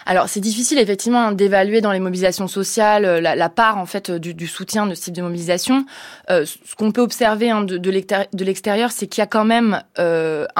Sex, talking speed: female, 225 wpm